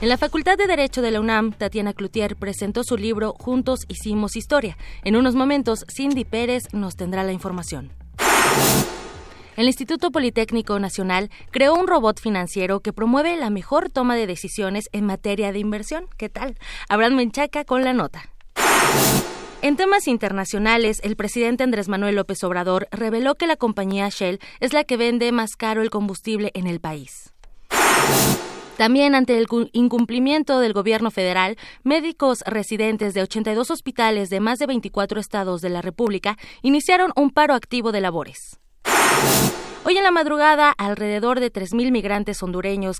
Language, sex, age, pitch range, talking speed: Spanish, female, 20-39, 200-255 Hz, 155 wpm